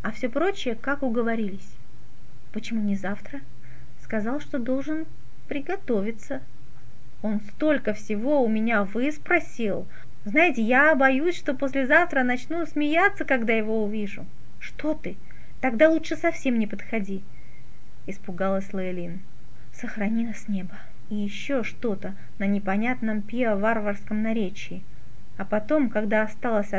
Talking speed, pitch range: 115 wpm, 210-275 Hz